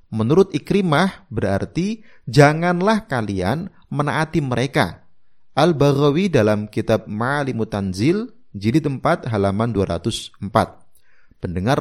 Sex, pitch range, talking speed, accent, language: male, 110-170 Hz, 85 wpm, native, Indonesian